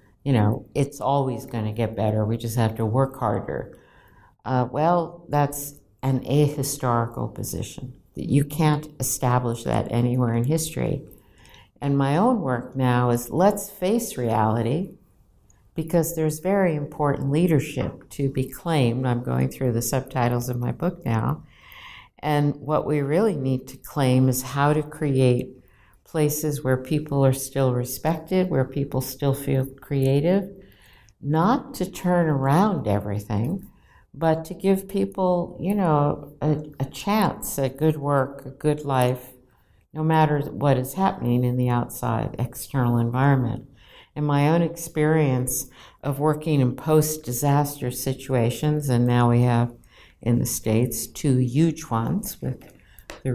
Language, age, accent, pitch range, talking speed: English, 60-79, American, 120-155 Hz, 140 wpm